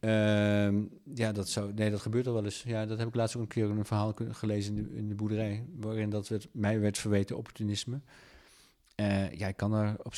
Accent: Dutch